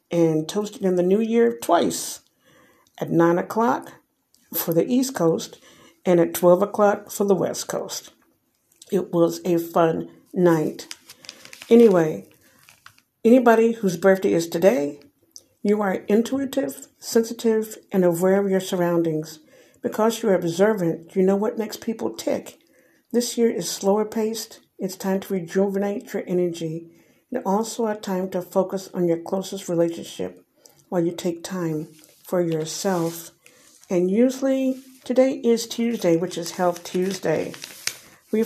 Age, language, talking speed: 60-79, English, 140 wpm